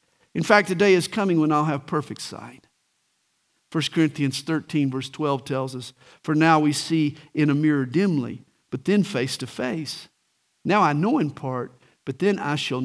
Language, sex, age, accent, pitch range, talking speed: English, male, 50-69, American, 135-185 Hz, 185 wpm